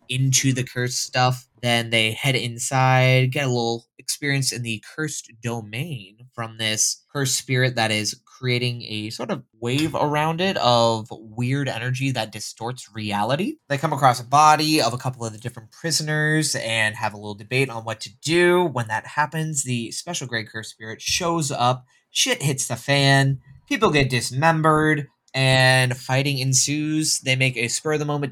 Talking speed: 170 wpm